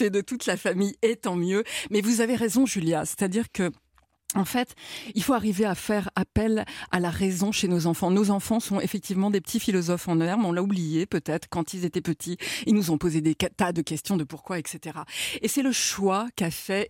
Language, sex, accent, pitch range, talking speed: French, female, French, 175-220 Hz, 220 wpm